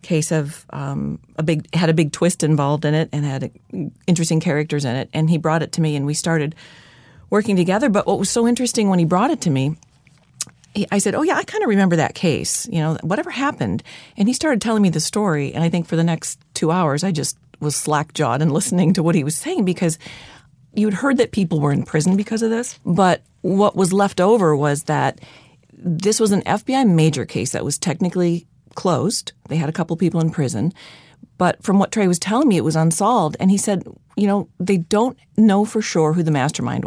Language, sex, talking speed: English, female, 225 wpm